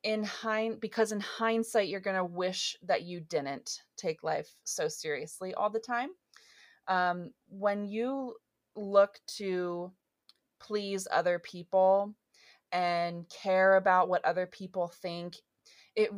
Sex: female